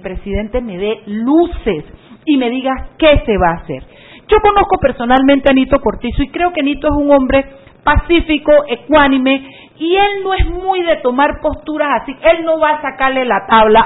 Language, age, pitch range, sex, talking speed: Spanish, 50-69, 230-300 Hz, female, 185 wpm